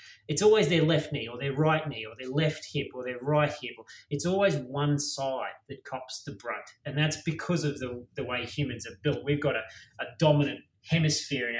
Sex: male